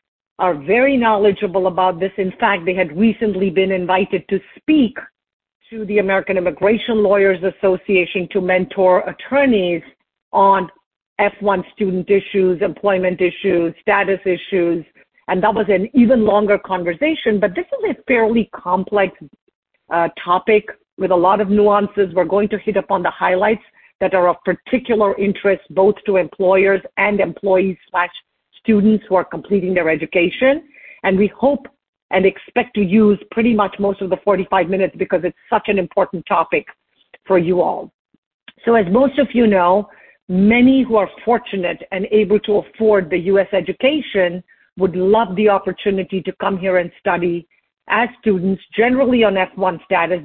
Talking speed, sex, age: 155 wpm, female, 50-69